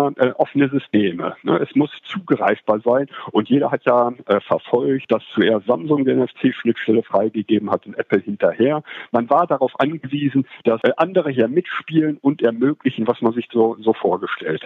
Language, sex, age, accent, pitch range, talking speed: German, male, 50-69, German, 120-155 Hz, 145 wpm